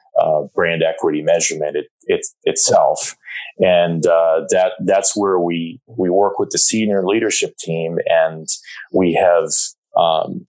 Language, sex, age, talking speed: English, male, 30-49, 125 wpm